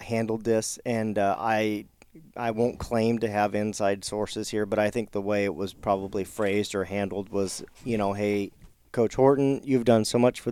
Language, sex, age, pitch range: English, male, 40-59, 100-115 Hz